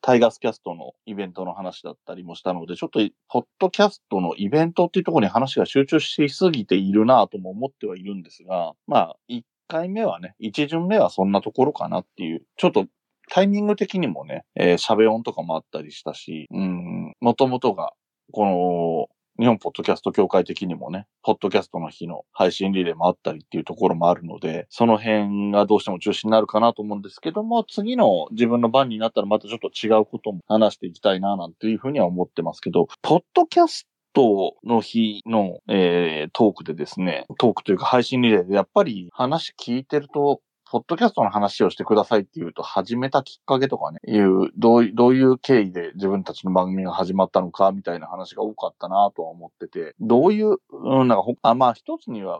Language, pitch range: Japanese, 95-145 Hz